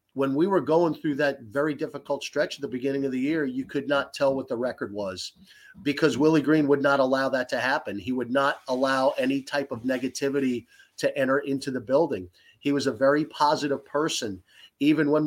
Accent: American